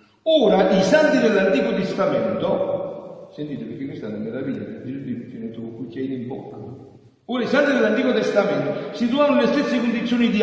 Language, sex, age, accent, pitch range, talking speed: Italian, male, 50-69, native, 195-275 Hz, 165 wpm